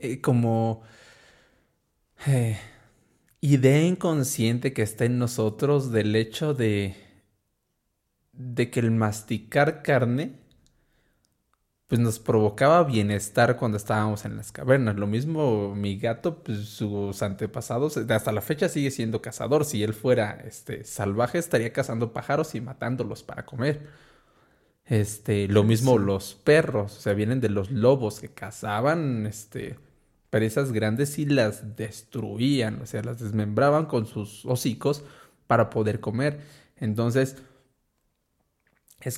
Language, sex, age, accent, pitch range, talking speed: Spanish, male, 20-39, Mexican, 110-140 Hz, 125 wpm